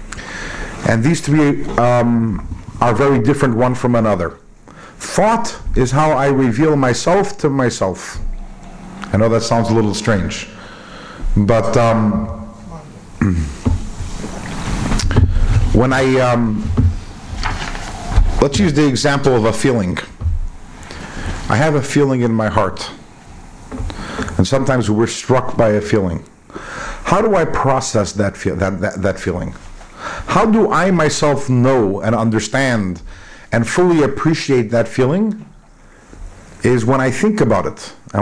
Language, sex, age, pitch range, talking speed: English, male, 50-69, 105-140 Hz, 125 wpm